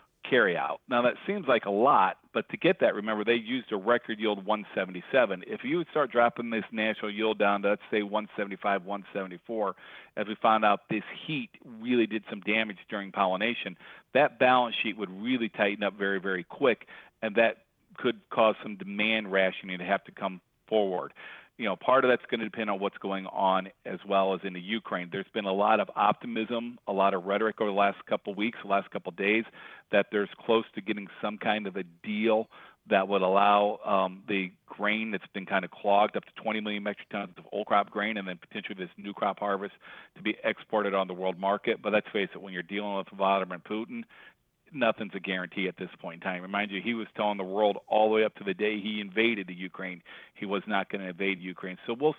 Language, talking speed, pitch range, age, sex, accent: English, 235 wpm, 95-110 Hz, 40-59, male, American